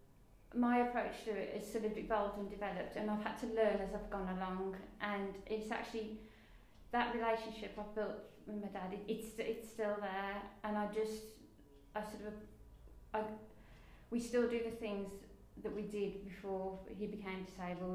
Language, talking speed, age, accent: English, 175 wpm, 30-49, British